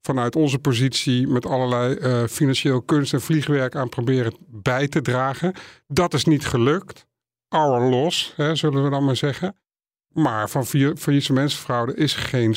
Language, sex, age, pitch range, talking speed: Dutch, male, 50-69, 125-145 Hz, 160 wpm